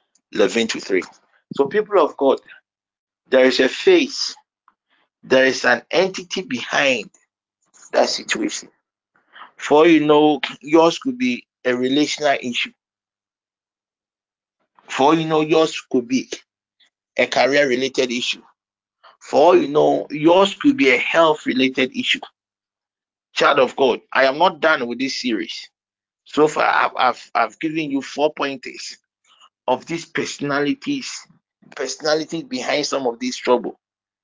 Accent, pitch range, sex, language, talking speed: Nigerian, 125-205 Hz, male, English, 135 wpm